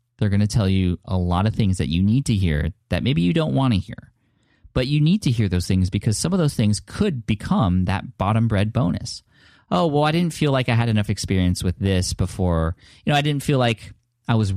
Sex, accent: male, American